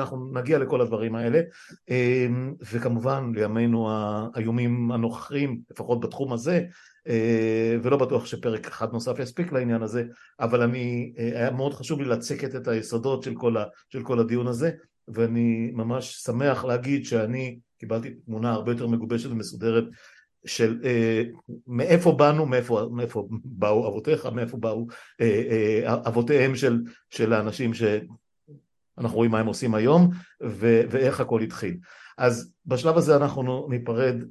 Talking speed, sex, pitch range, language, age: 125 wpm, male, 115-130 Hz, Hebrew, 60-79